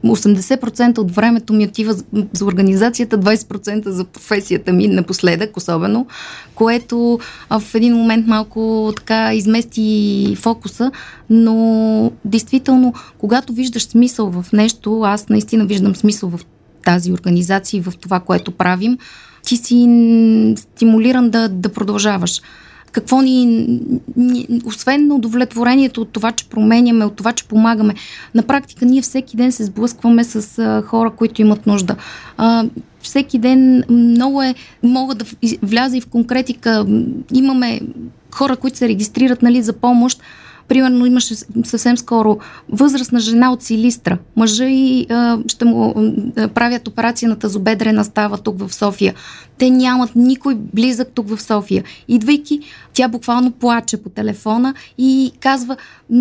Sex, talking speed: female, 135 wpm